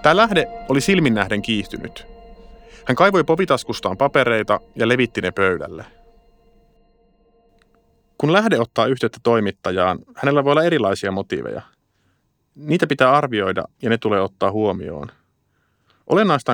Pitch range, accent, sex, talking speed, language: 105-165 Hz, native, male, 115 wpm, Finnish